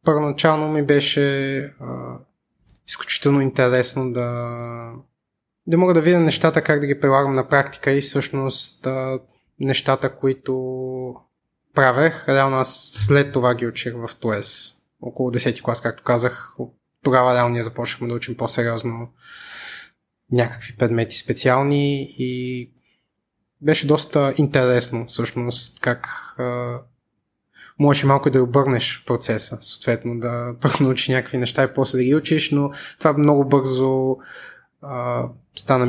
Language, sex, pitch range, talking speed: Bulgarian, male, 120-140 Hz, 125 wpm